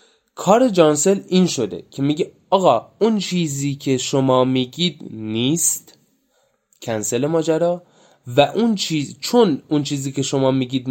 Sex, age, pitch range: male, 20-39, 125-165 Hz